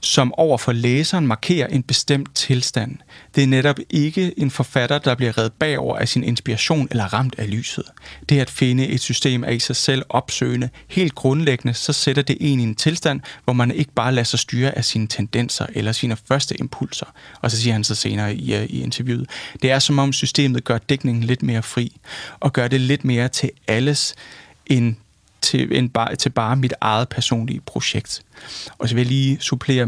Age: 30-49